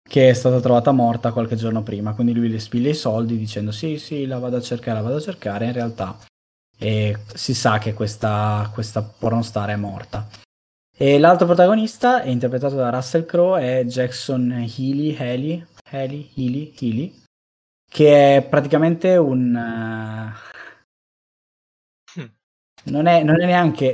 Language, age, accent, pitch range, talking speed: Italian, 20-39, native, 115-140 Hz, 150 wpm